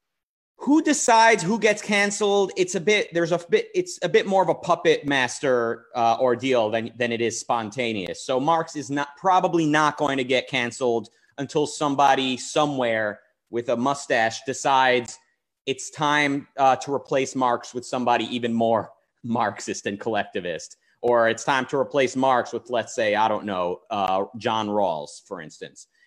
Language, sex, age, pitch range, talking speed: English, male, 30-49, 120-165 Hz, 170 wpm